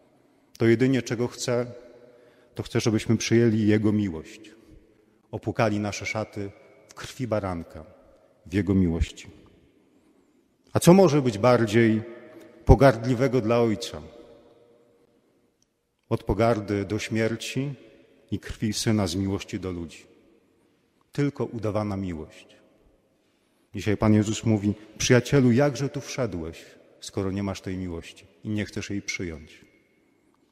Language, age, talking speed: Polish, 40-59, 115 wpm